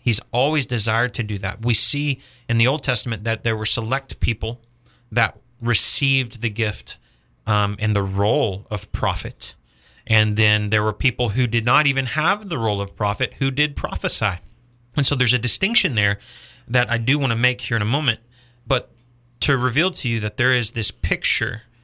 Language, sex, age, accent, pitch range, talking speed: English, male, 30-49, American, 105-120 Hz, 190 wpm